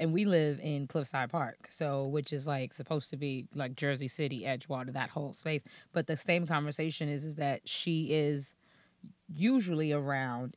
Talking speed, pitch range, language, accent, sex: 175 wpm, 145-170 Hz, English, American, female